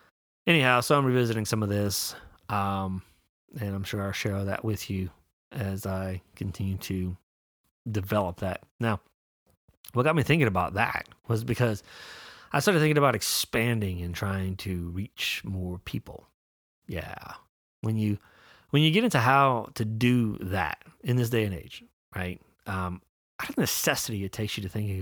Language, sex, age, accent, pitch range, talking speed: English, male, 30-49, American, 95-115 Hz, 165 wpm